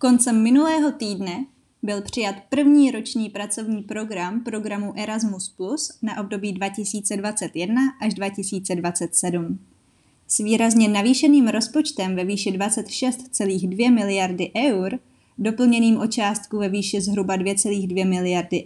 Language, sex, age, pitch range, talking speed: Czech, female, 20-39, 190-235 Hz, 110 wpm